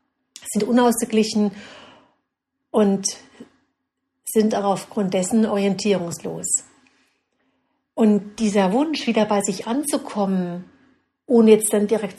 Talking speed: 95 wpm